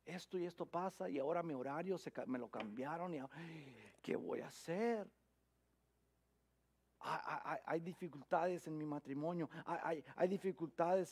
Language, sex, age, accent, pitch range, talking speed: English, male, 50-69, Mexican, 140-220 Hz, 150 wpm